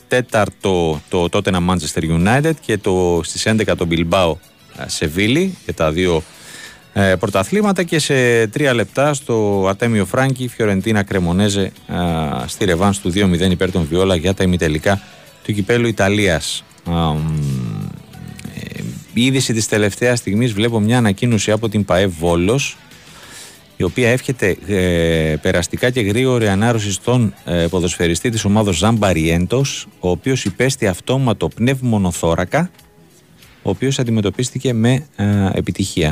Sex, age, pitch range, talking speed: male, 30-49, 90-120 Hz, 135 wpm